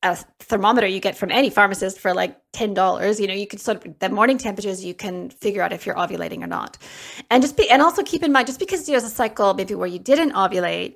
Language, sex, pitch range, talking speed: English, female, 195-250 Hz, 250 wpm